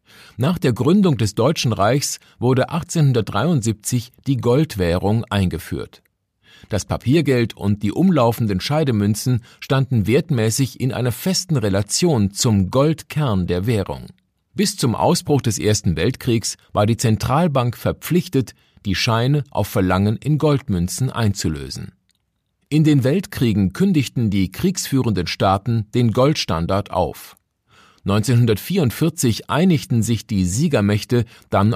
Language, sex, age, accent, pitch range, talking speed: German, male, 50-69, German, 100-140 Hz, 115 wpm